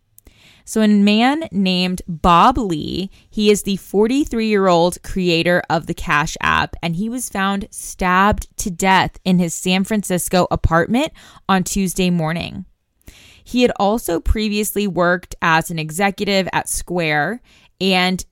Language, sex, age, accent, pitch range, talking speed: English, female, 20-39, American, 165-205 Hz, 135 wpm